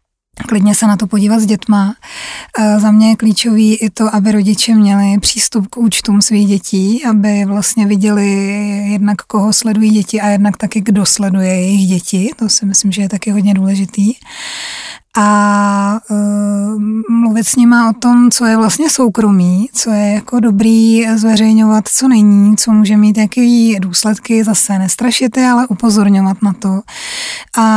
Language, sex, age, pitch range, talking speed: Czech, female, 20-39, 205-220 Hz, 155 wpm